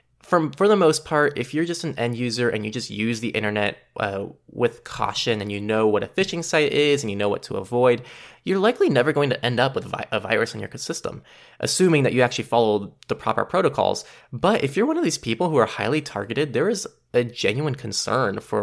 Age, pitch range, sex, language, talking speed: 20-39, 110-155 Hz, male, English, 230 wpm